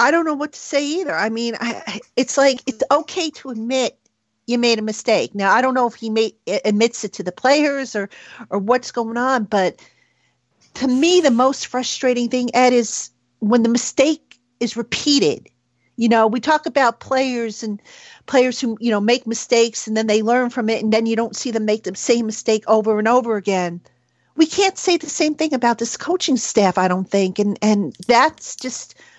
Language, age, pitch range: English, 50-69, 215-255 Hz